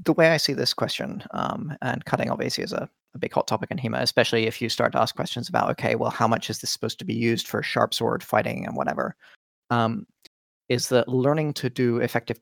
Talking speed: 235 wpm